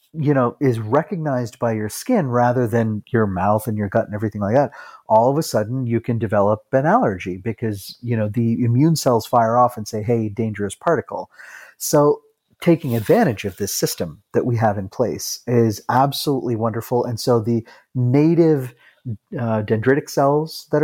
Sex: male